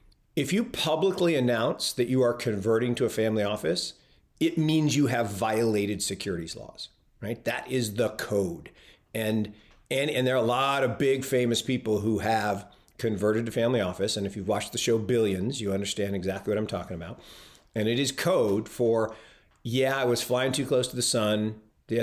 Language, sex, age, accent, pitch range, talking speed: English, male, 50-69, American, 105-125 Hz, 190 wpm